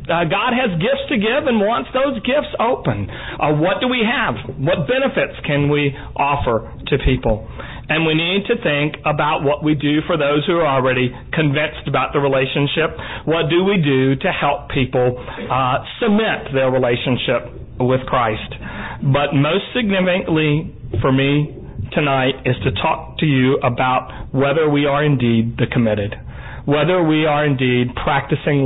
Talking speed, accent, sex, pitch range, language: 160 wpm, American, male, 130-175 Hz, English